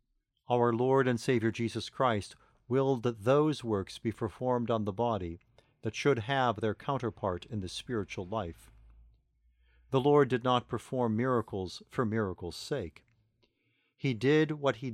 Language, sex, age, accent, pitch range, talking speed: English, male, 50-69, American, 105-130 Hz, 150 wpm